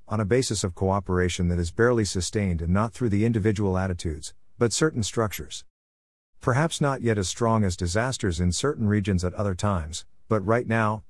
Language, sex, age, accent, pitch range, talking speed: English, male, 50-69, American, 90-115 Hz, 185 wpm